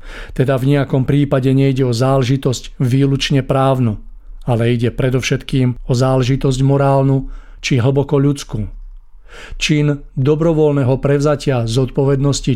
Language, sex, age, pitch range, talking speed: Czech, male, 50-69, 130-145 Hz, 110 wpm